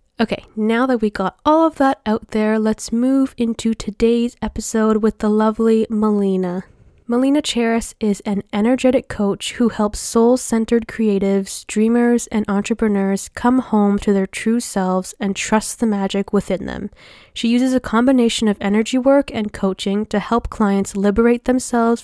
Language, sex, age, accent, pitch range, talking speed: English, female, 10-29, American, 195-230 Hz, 160 wpm